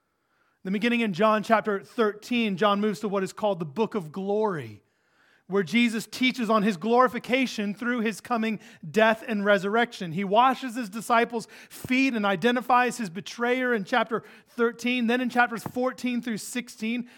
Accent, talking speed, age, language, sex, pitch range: American, 160 wpm, 30-49, English, male, 170-225 Hz